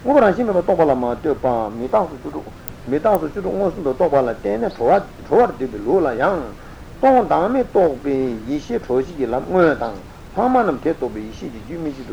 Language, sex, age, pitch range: Italian, male, 60-79, 125-195 Hz